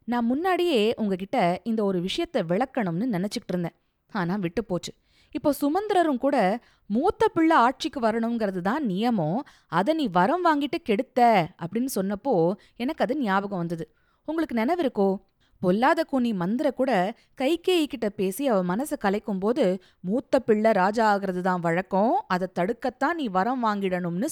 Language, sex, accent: Tamil, female, native